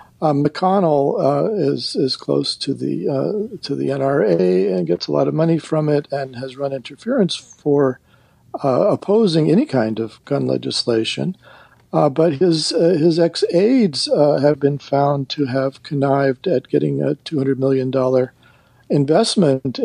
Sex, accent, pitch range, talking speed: male, American, 135-170 Hz, 155 wpm